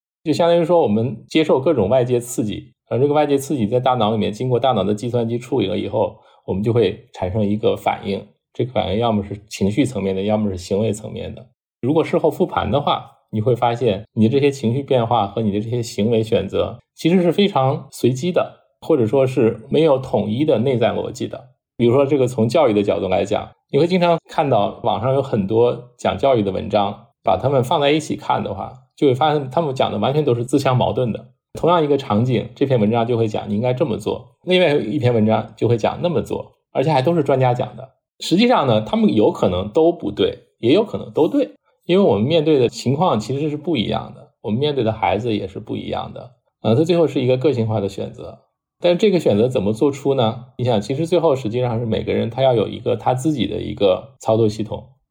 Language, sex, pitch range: Chinese, male, 110-150 Hz